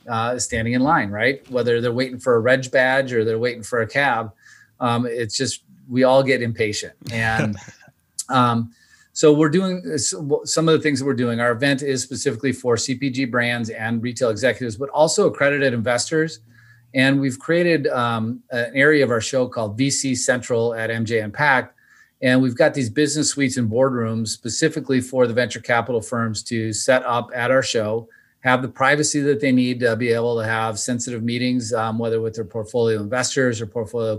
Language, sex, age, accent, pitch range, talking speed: English, male, 30-49, American, 115-130 Hz, 190 wpm